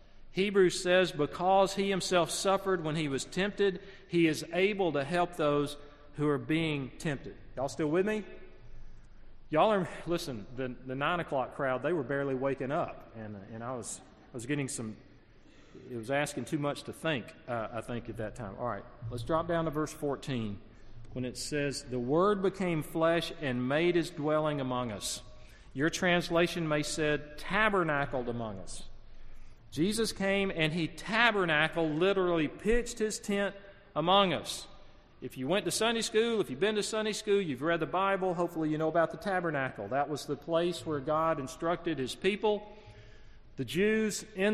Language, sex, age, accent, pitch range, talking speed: English, male, 40-59, American, 130-180 Hz, 175 wpm